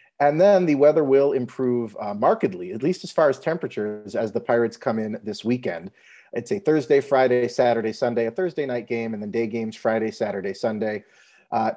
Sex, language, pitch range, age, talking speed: male, English, 115-145 Hz, 40-59, 200 wpm